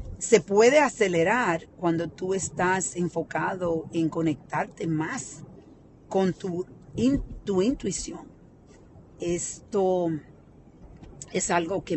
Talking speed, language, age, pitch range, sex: 90 wpm, Spanish, 40-59, 155-185 Hz, female